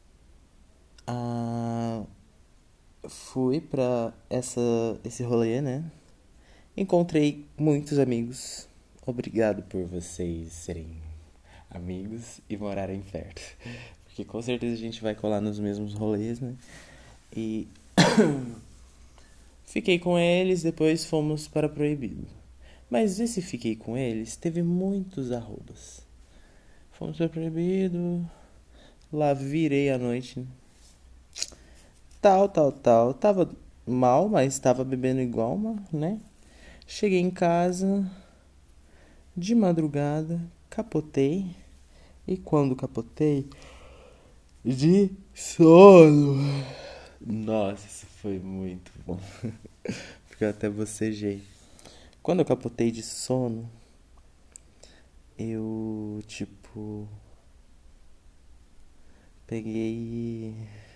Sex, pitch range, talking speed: male, 90-145 Hz, 90 wpm